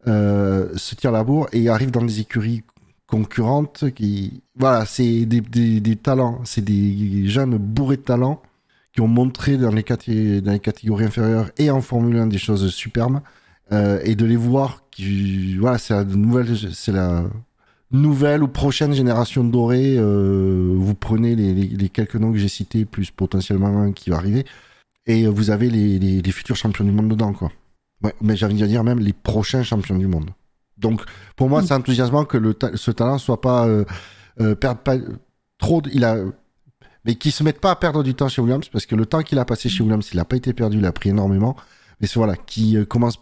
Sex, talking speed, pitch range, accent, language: male, 215 wpm, 100-125 Hz, French, French